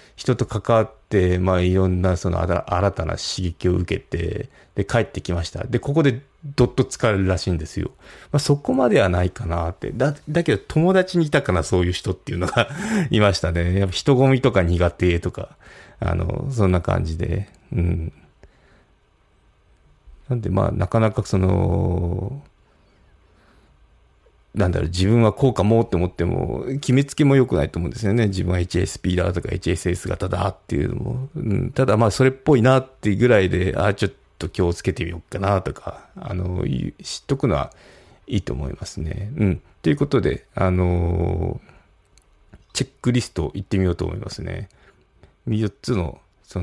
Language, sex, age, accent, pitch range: Japanese, male, 40-59, native, 90-120 Hz